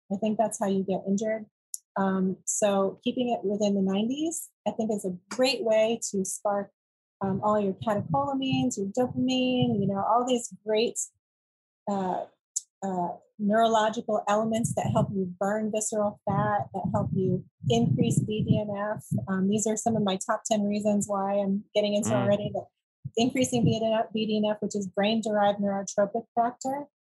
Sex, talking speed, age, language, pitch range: female, 155 wpm, 30-49, English, 195-235 Hz